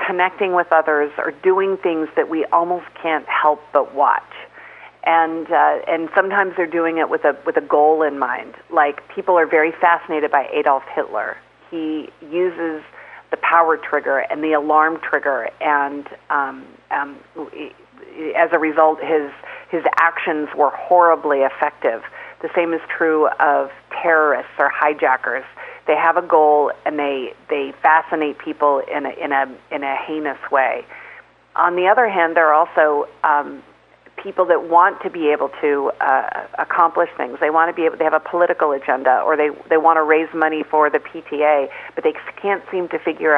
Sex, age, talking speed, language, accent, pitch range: female, 40-59, 175 wpm, English, American, 145-170 Hz